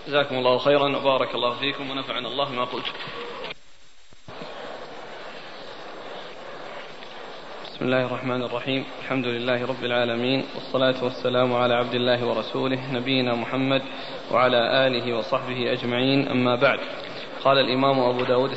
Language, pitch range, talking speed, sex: Arabic, 125-140 Hz, 105 wpm, male